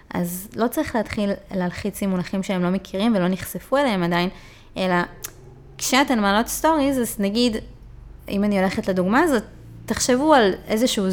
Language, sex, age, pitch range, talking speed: Hebrew, female, 20-39, 185-235 Hz, 150 wpm